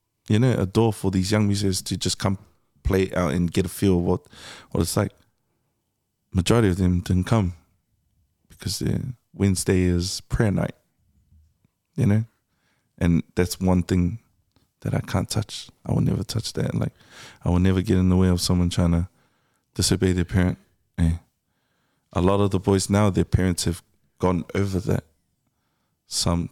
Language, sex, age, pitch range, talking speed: English, male, 20-39, 90-105 Hz, 175 wpm